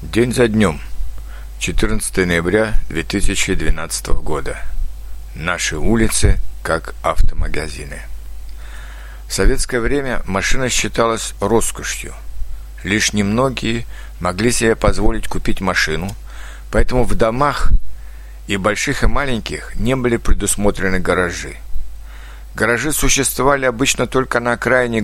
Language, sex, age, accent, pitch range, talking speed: Russian, male, 60-79, native, 75-120 Hz, 100 wpm